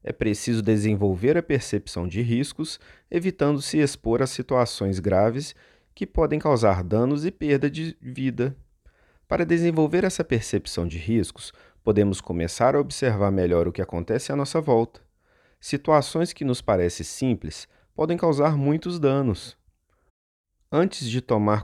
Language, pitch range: Portuguese, 95-140 Hz